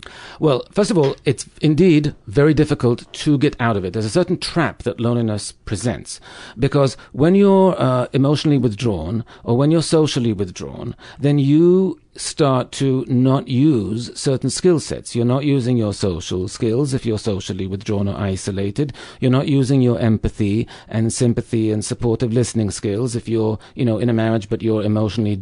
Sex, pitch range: male, 110-145 Hz